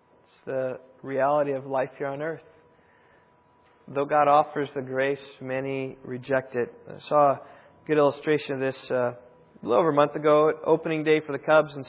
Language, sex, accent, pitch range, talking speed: English, male, American, 135-155 Hz, 175 wpm